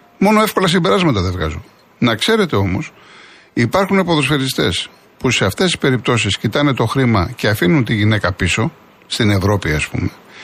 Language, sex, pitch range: Greek, male, 115-170 Hz